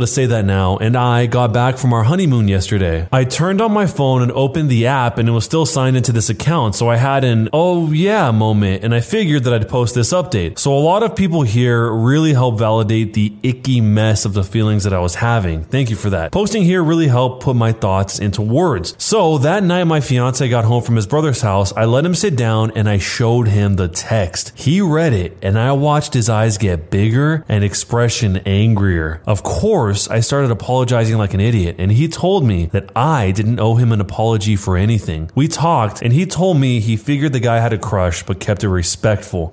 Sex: male